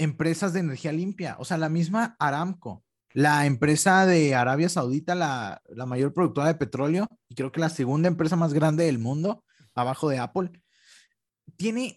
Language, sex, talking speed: Spanish, male, 170 wpm